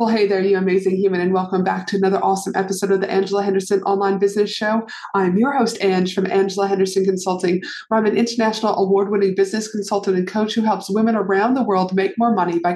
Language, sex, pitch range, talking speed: English, female, 190-225 Hz, 220 wpm